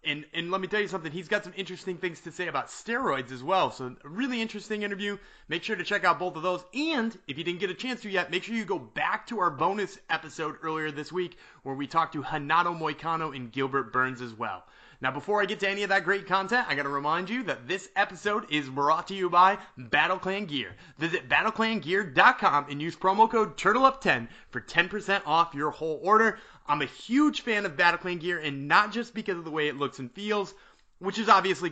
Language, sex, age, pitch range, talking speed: English, male, 30-49, 150-205 Hz, 235 wpm